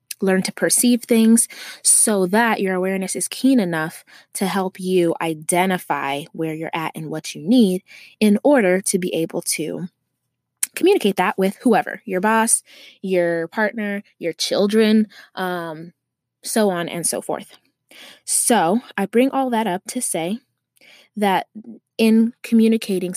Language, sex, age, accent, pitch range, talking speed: English, female, 20-39, American, 175-225 Hz, 140 wpm